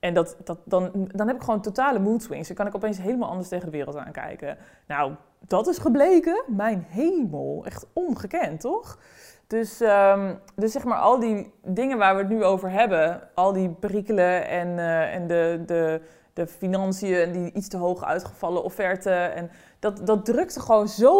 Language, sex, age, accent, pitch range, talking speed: Dutch, female, 20-39, Dutch, 180-250 Hz, 190 wpm